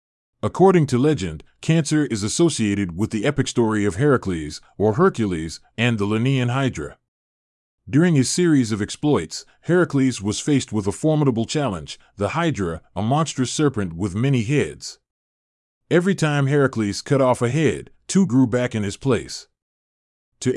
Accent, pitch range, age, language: American, 105-145 Hz, 30-49, English